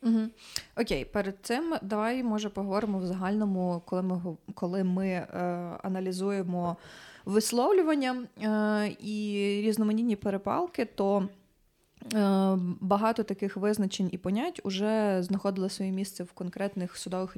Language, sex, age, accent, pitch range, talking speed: Ukrainian, female, 20-39, native, 180-210 Hz, 115 wpm